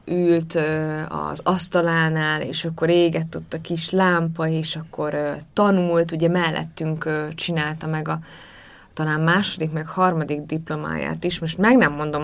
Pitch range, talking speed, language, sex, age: 155-180 Hz, 135 wpm, Hungarian, female, 20-39